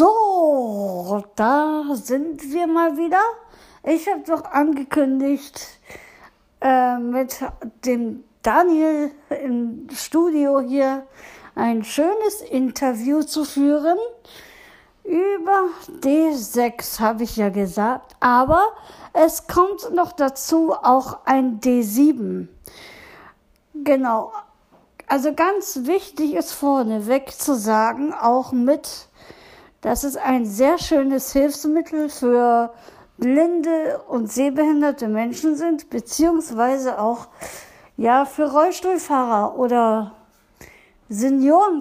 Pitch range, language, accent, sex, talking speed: 245-315 Hz, German, German, female, 95 wpm